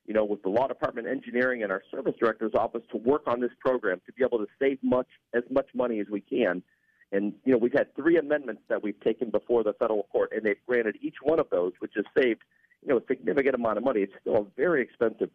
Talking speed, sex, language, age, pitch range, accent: 260 wpm, male, English, 50-69, 110-135 Hz, American